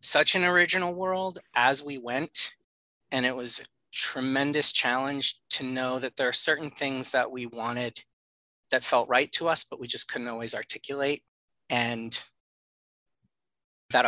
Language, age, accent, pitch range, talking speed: English, 30-49, American, 125-150 Hz, 155 wpm